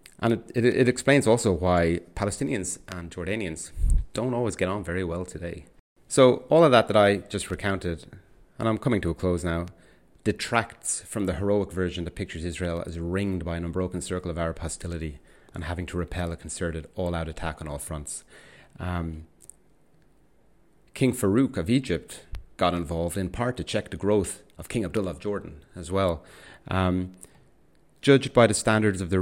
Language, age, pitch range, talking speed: English, 30-49, 85-105 Hz, 180 wpm